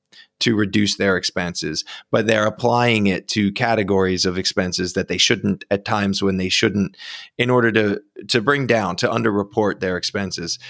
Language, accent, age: English, American, 20-39